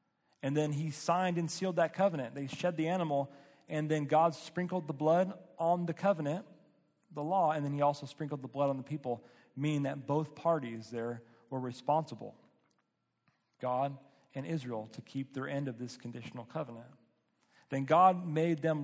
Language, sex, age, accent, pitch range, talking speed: English, male, 40-59, American, 125-160 Hz, 175 wpm